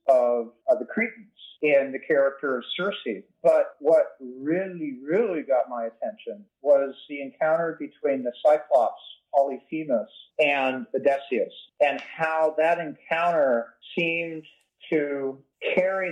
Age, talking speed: 40-59, 120 wpm